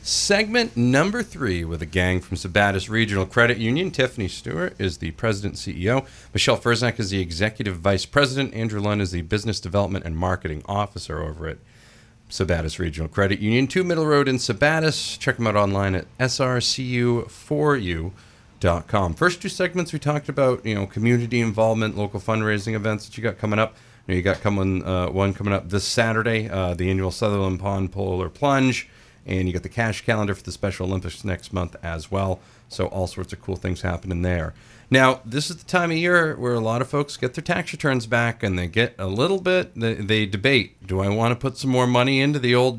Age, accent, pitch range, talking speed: 40-59, American, 95-135 Hz, 210 wpm